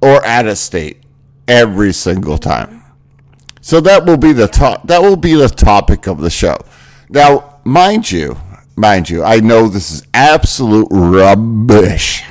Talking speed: 155 wpm